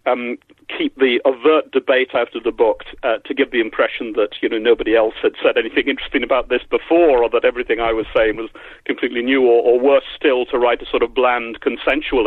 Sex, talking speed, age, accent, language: male, 225 wpm, 50-69, British, English